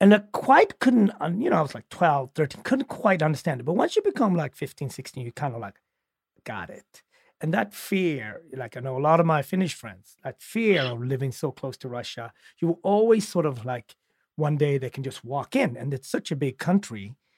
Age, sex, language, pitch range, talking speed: 40-59, male, English, 130-180 Hz, 230 wpm